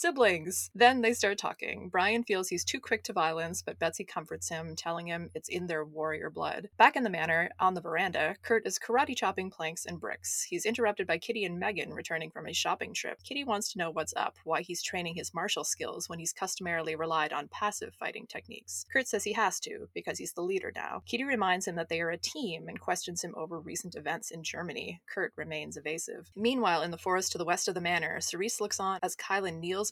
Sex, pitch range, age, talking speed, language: female, 165-220 Hz, 20-39, 225 wpm, English